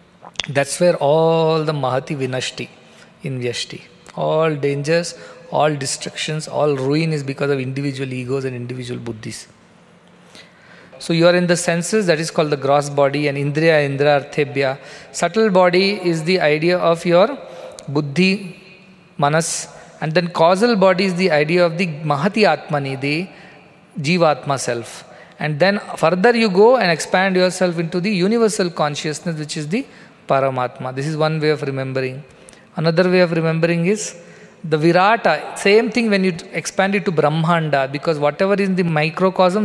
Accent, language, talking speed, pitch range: Indian, English, 155 wpm, 145-185 Hz